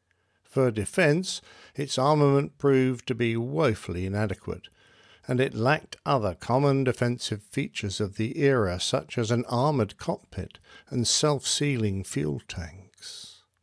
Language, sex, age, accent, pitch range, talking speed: English, male, 60-79, British, 110-140 Hz, 130 wpm